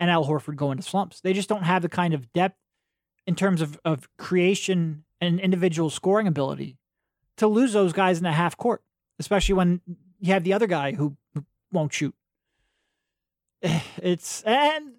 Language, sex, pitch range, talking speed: English, male, 160-200 Hz, 170 wpm